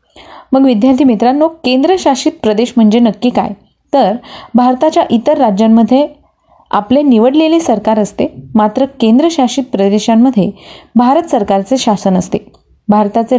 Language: Marathi